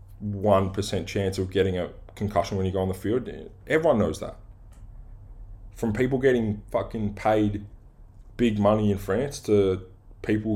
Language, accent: English, Australian